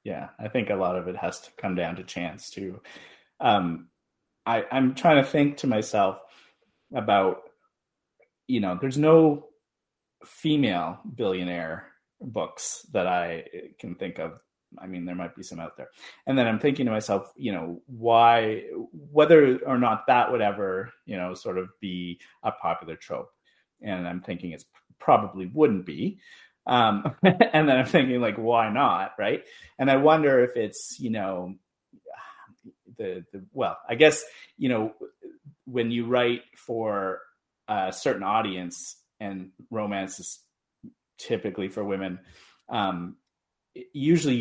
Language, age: English, 30-49